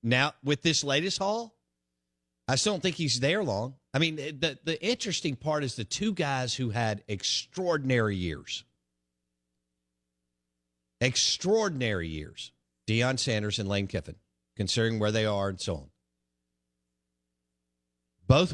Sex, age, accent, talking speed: male, 50-69, American, 135 wpm